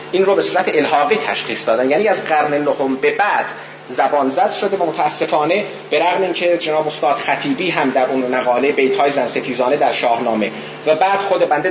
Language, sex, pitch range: Persian, male, 140-180 Hz